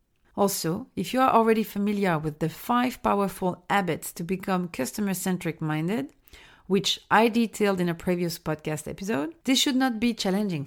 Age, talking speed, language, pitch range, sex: 40-59, 155 wpm, French, 185-245 Hz, female